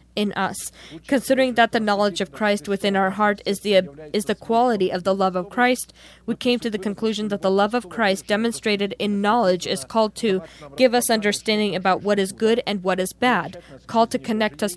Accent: American